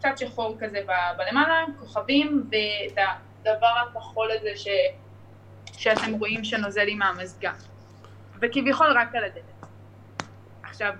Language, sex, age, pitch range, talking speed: Hebrew, female, 10-29, 195-245 Hz, 120 wpm